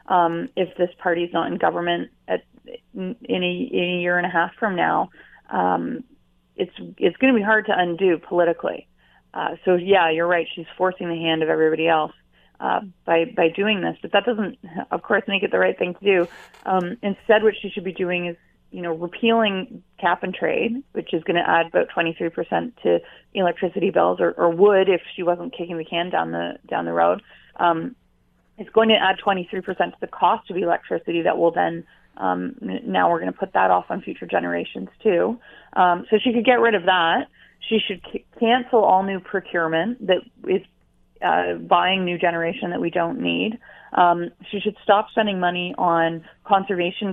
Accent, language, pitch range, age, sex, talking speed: American, English, 165-200 Hz, 30-49, female, 200 wpm